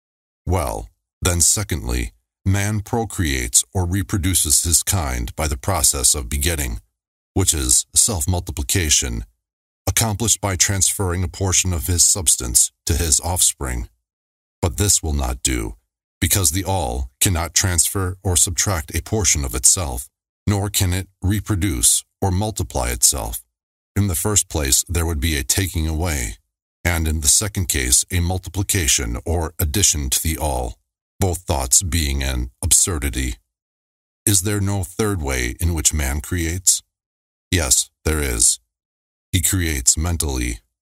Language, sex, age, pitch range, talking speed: English, male, 40-59, 70-95 Hz, 135 wpm